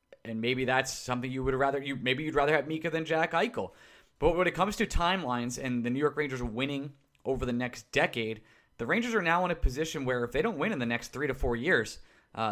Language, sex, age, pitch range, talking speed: English, male, 20-39, 120-155 Hz, 250 wpm